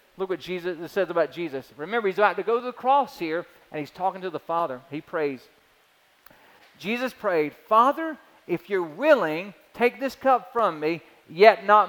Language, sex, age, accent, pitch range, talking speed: English, male, 40-59, American, 165-225 Hz, 180 wpm